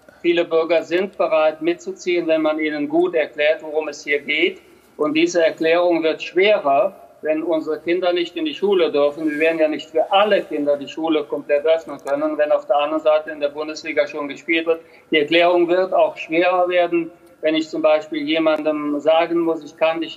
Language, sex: German, male